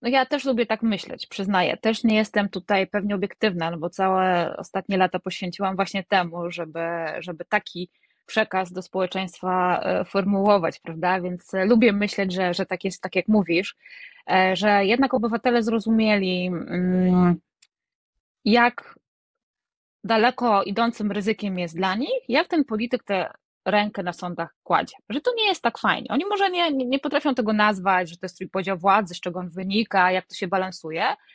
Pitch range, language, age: 185-245 Hz, Polish, 20-39